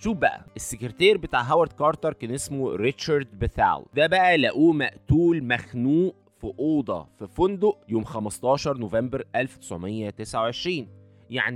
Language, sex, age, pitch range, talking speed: Arabic, male, 20-39, 105-155 Hz, 120 wpm